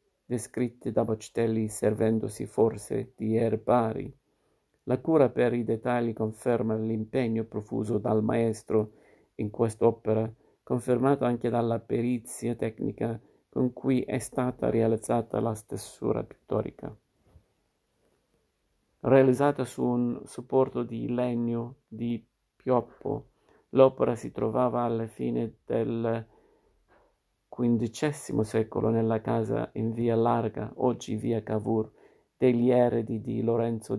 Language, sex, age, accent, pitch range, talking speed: Italian, male, 50-69, native, 110-125 Hz, 105 wpm